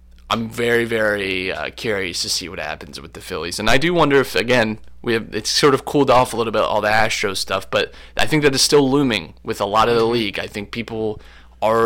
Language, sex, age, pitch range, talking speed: English, male, 20-39, 100-120 Hz, 245 wpm